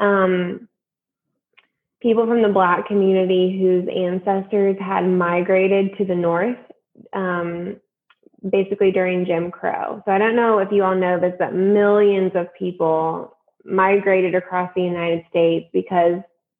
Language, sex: English, female